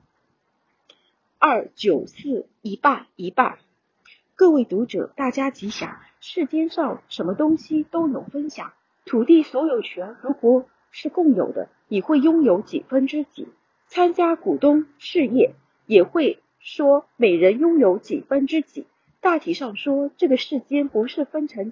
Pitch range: 245-320 Hz